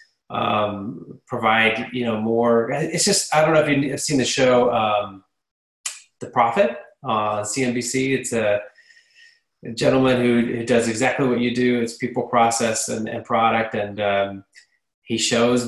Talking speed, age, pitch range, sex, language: 170 wpm, 20-39, 115-145 Hz, male, English